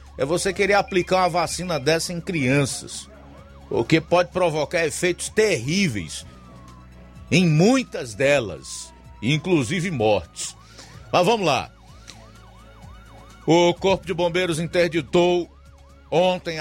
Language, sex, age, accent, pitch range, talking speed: Portuguese, male, 50-69, Brazilian, 130-170 Hz, 105 wpm